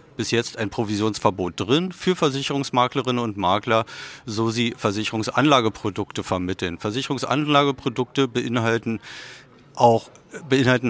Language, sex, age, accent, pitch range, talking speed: German, male, 50-69, German, 115-145 Hz, 95 wpm